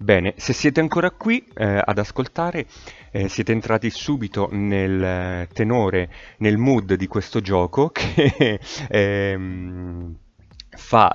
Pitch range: 90-110 Hz